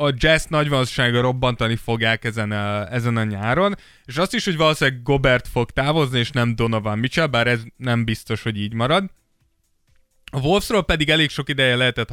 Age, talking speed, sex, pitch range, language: 20-39, 185 wpm, male, 115-150 Hz, Hungarian